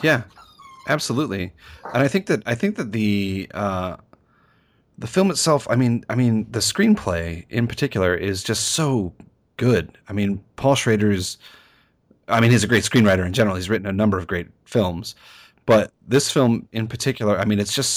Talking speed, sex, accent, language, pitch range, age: 185 wpm, male, American, English, 95-120 Hz, 30-49